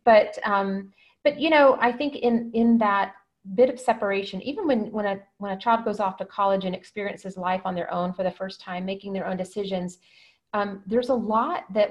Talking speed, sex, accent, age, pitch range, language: 215 wpm, female, American, 30-49, 190-220 Hz, English